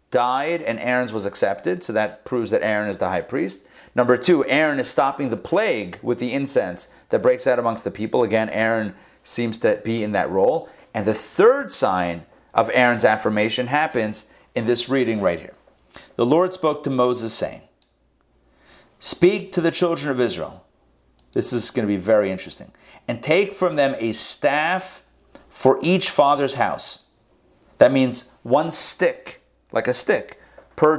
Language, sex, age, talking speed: English, male, 40-59, 170 wpm